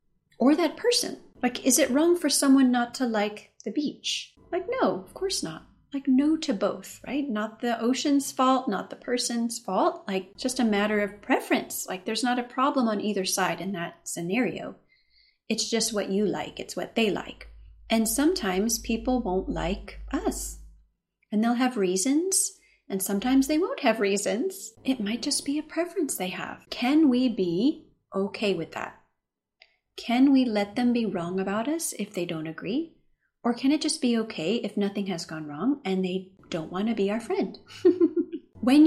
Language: English